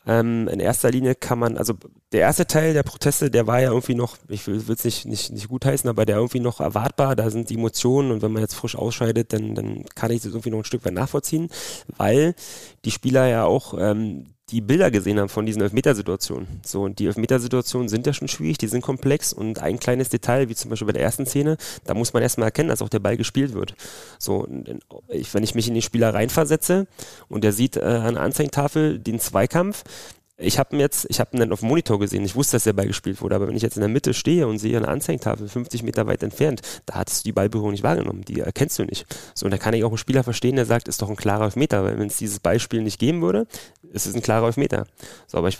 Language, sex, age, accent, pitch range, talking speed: German, male, 30-49, German, 105-130 Hz, 255 wpm